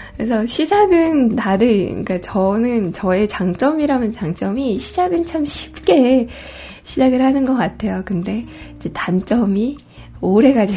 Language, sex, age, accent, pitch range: Korean, female, 20-39, native, 195-265 Hz